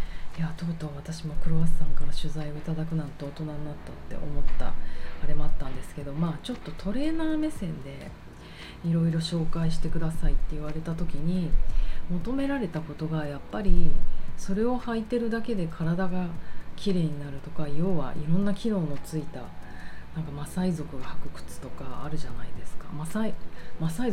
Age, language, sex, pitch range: 30-49, Japanese, female, 150-190 Hz